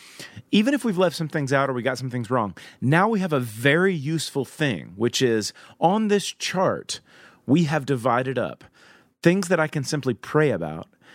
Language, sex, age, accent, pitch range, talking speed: English, male, 30-49, American, 125-165 Hz, 195 wpm